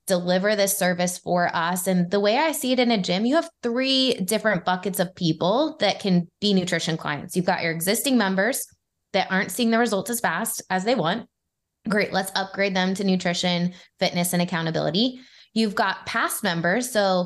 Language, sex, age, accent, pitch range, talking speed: English, female, 20-39, American, 170-210 Hz, 190 wpm